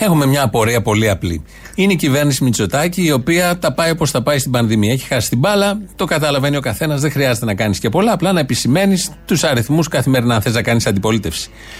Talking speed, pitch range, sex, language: 220 wpm, 130-180 Hz, male, Greek